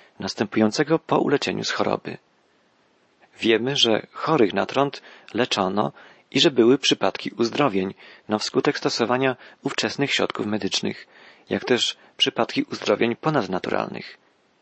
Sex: male